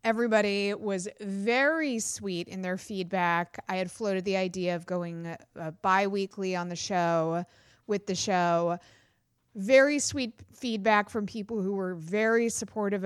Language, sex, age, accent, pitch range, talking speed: English, female, 30-49, American, 185-245 Hz, 140 wpm